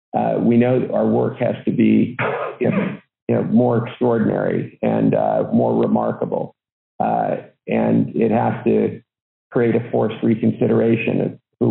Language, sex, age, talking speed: English, male, 40-59, 155 wpm